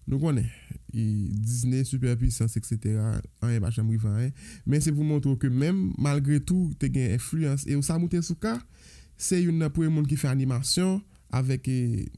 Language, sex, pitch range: French, male, 130-165 Hz